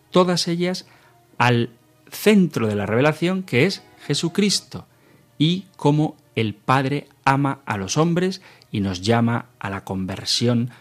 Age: 40-59